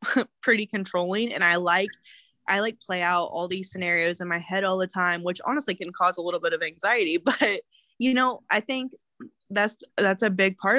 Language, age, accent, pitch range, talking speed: English, 20-39, American, 185-230 Hz, 205 wpm